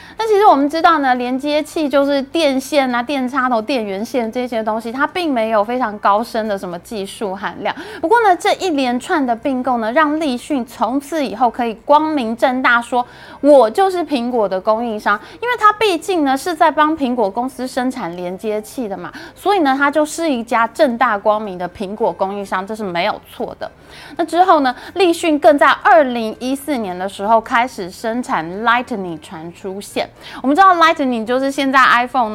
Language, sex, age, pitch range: Chinese, female, 20-39, 215-300 Hz